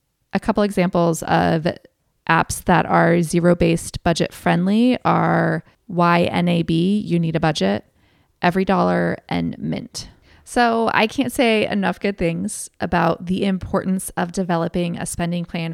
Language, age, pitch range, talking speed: English, 20-39, 165-200 Hz, 135 wpm